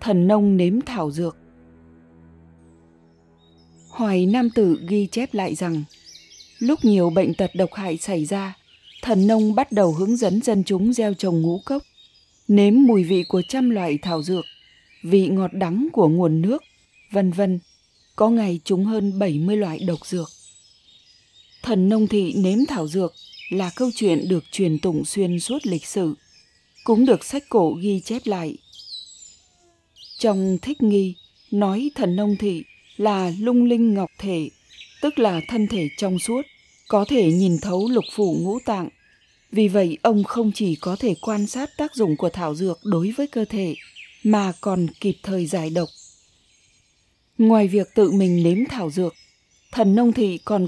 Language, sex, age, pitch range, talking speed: Vietnamese, female, 20-39, 170-220 Hz, 165 wpm